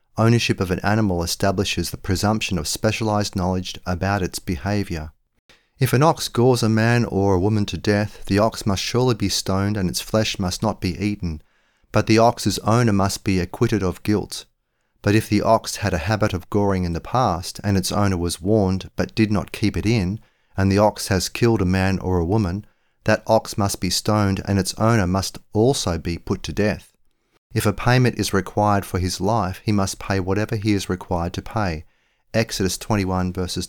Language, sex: English, male